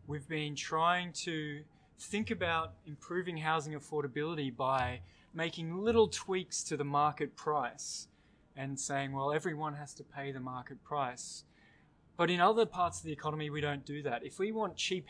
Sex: male